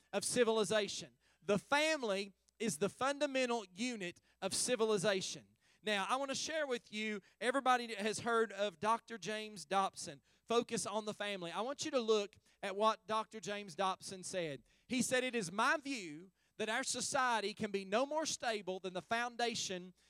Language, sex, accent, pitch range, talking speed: English, male, American, 190-245 Hz, 165 wpm